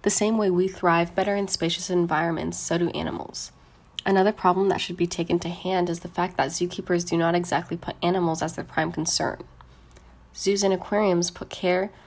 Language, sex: English, female